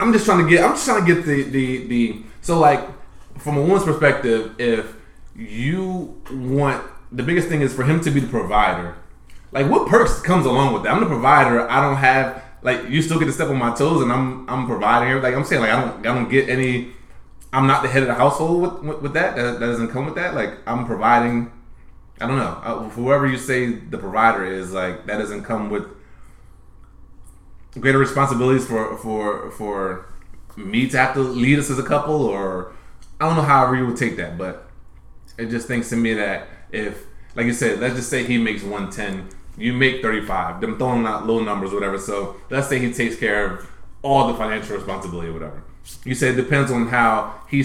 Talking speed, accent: 220 wpm, American